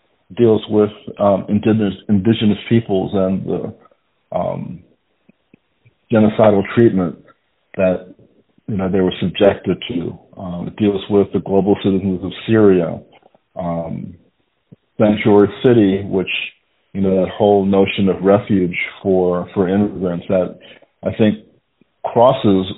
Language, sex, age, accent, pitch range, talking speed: English, male, 50-69, American, 95-105 Hz, 120 wpm